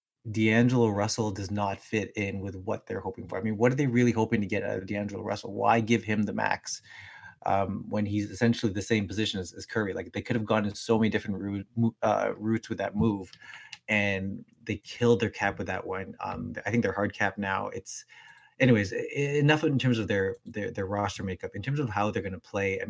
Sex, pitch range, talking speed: male, 100-115 Hz, 230 wpm